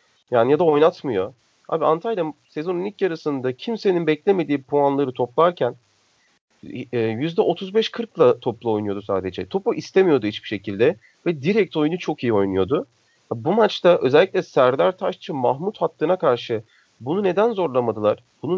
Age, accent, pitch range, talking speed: 40-59, native, 125-180 Hz, 125 wpm